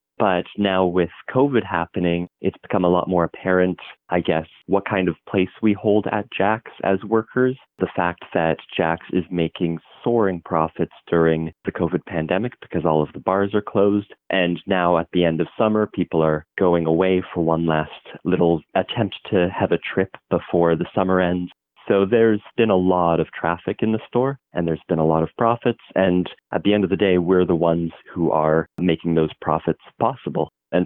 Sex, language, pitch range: male, English, 85-95 Hz